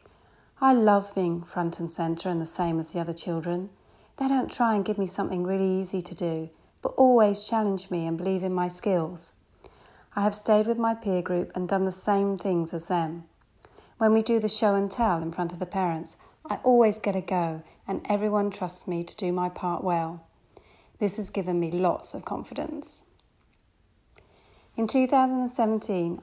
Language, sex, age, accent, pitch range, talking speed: English, female, 40-59, British, 175-215 Hz, 190 wpm